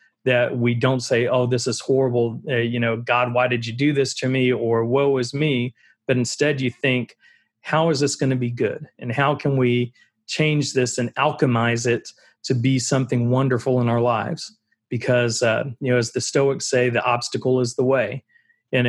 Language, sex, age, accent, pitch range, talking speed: English, male, 40-59, American, 120-135 Hz, 205 wpm